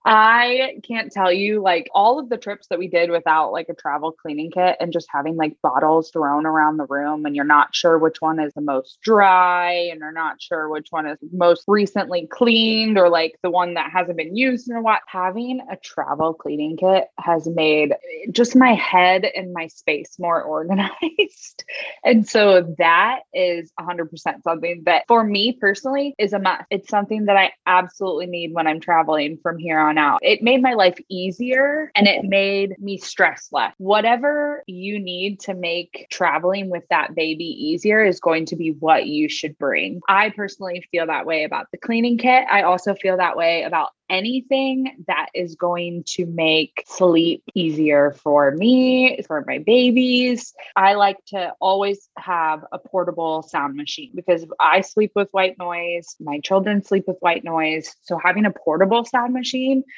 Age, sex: 20-39, female